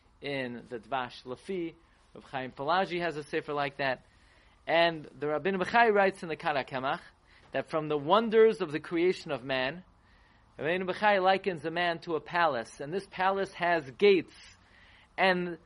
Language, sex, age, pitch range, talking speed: English, male, 30-49, 130-185 Hz, 165 wpm